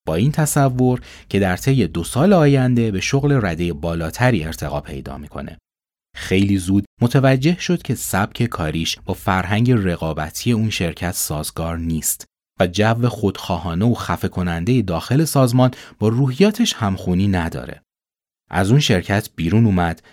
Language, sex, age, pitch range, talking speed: Persian, male, 30-49, 85-130 Hz, 140 wpm